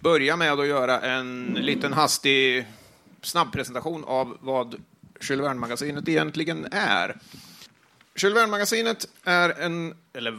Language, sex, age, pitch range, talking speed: Swedish, male, 40-59, 135-170 Hz, 105 wpm